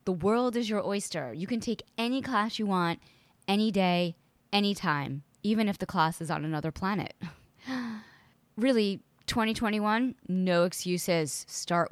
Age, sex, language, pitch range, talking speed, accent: 20-39, female, English, 165-195 Hz, 145 wpm, American